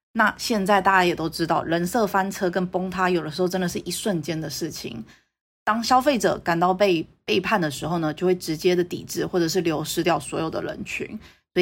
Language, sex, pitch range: Chinese, female, 170-220 Hz